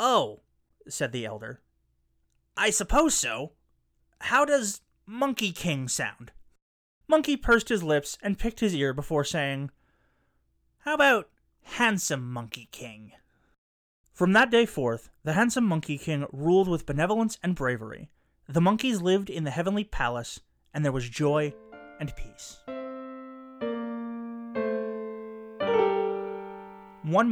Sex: male